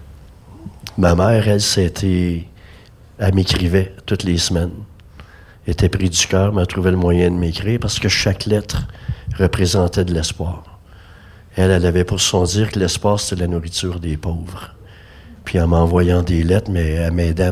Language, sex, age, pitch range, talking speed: French, male, 60-79, 85-100 Hz, 165 wpm